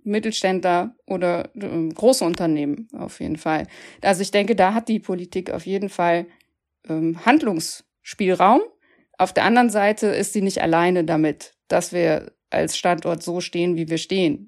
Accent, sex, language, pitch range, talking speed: German, female, German, 175-220 Hz, 150 wpm